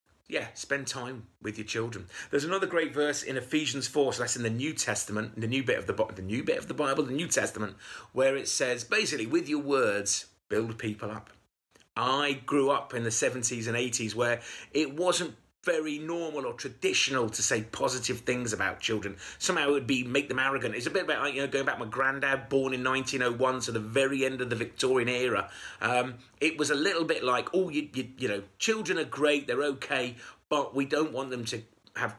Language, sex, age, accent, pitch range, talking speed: English, male, 30-49, British, 110-140 Hz, 220 wpm